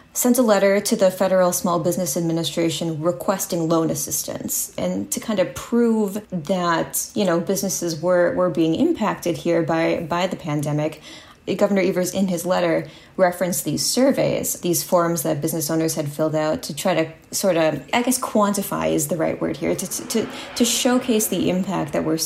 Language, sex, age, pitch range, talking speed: English, female, 20-39, 165-195 Hz, 180 wpm